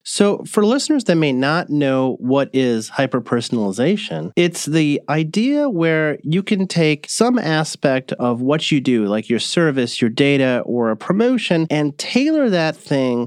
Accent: American